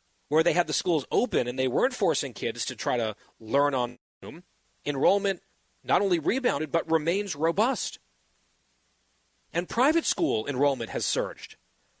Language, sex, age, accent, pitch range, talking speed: English, male, 30-49, American, 130-180 Hz, 150 wpm